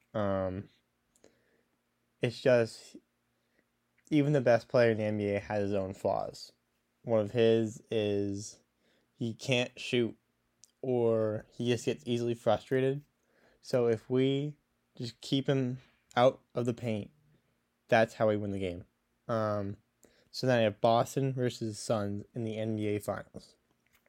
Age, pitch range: 10-29, 110-125 Hz